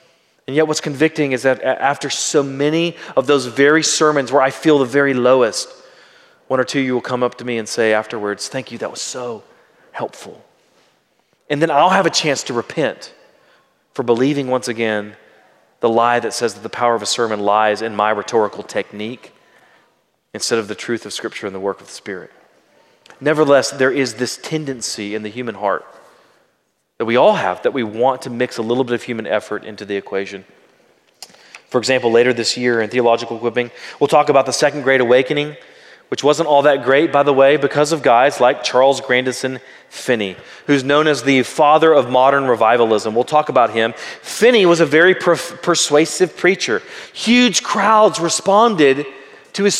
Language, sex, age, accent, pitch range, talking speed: English, male, 30-49, American, 120-160 Hz, 190 wpm